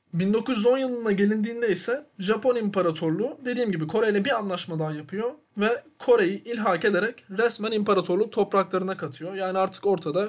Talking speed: 140 wpm